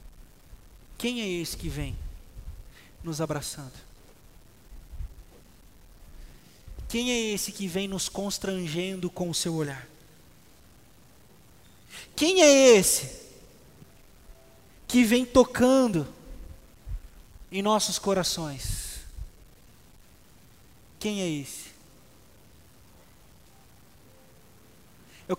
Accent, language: Brazilian, Portuguese